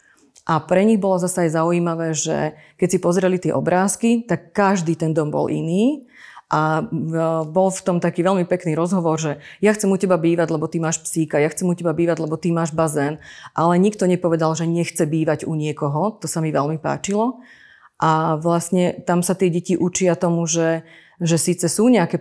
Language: Slovak